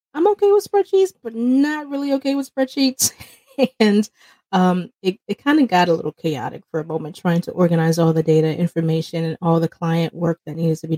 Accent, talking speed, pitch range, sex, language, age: American, 215 wpm, 160-185 Hz, female, English, 30-49